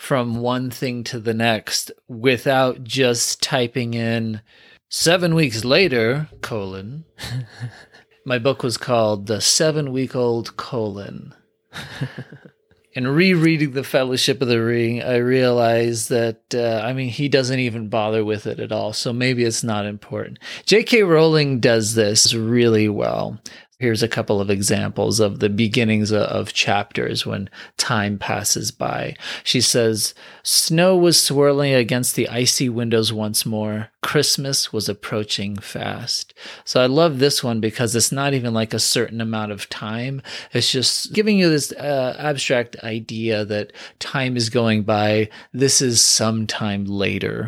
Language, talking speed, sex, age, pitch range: English, 150 wpm, male, 30-49, 110-130 Hz